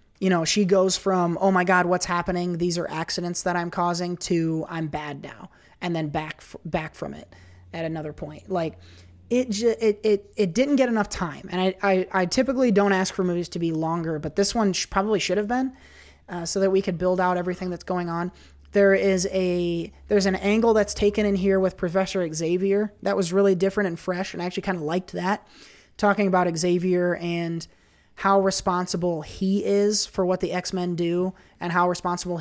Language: English